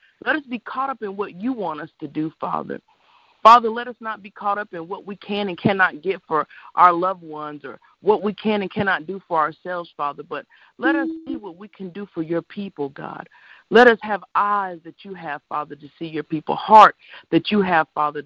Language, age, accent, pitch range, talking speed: English, 50-69, American, 160-210 Hz, 230 wpm